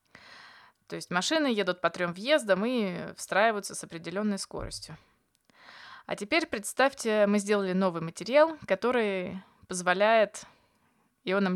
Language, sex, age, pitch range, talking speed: Russian, female, 20-39, 185-220 Hz, 115 wpm